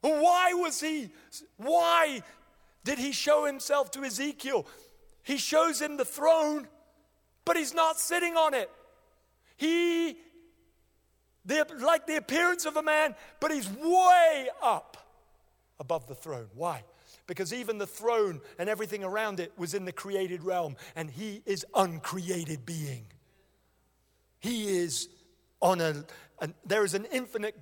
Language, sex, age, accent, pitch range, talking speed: English, male, 50-69, British, 180-275 Hz, 135 wpm